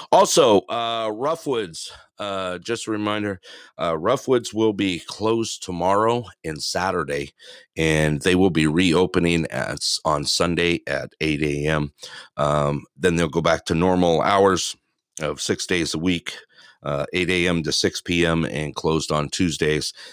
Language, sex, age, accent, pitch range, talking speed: English, male, 50-69, American, 80-105 Hz, 145 wpm